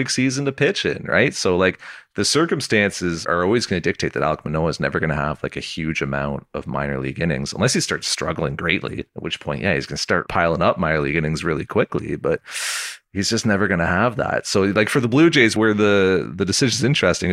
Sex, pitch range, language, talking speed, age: male, 80-100 Hz, English, 240 wpm, 30-49